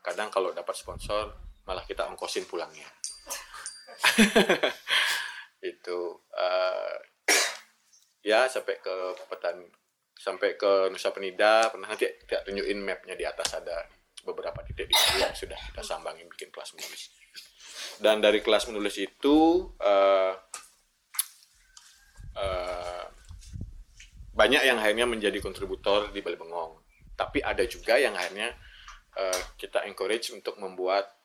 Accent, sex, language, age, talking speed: native, male, Indonesian, 20-39, 115 wpm